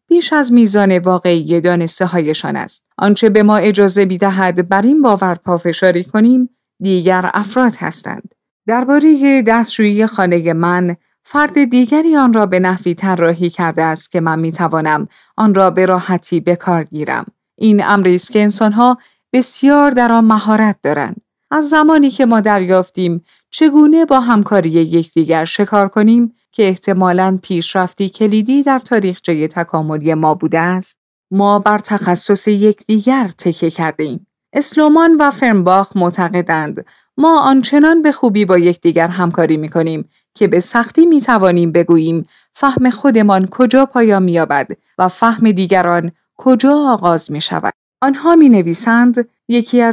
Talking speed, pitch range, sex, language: 125 wpm, 175-240 Hz, female, Persian